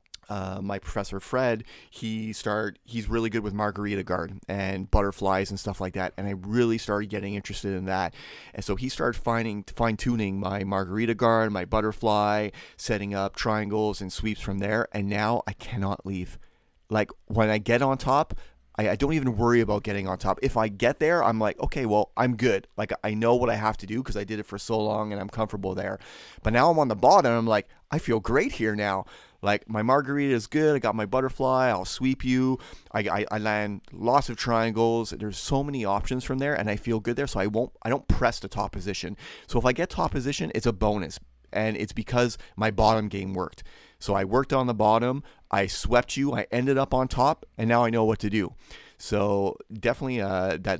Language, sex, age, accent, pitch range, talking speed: English, male, 30-49, American, 100-120 Hz, 220 wpm